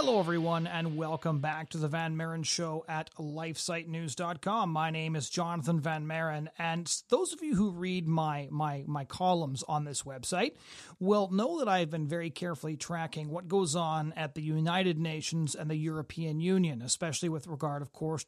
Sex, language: male, English